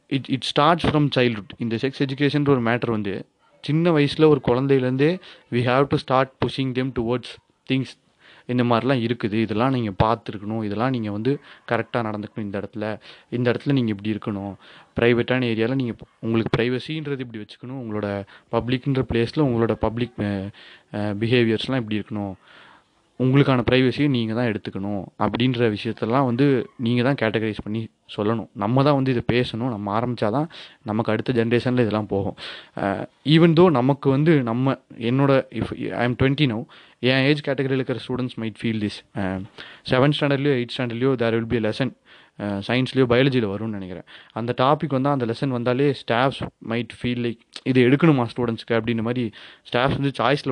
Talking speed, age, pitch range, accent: 165 wpm, 30-49, 110-135 Hz, native